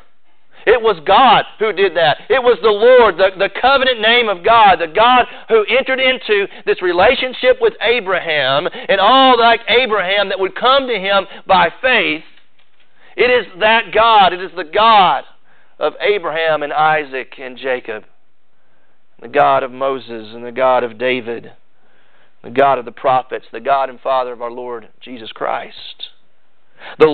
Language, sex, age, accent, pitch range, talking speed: English, male, 40-59, American, 185-255 Hz, 165 wpm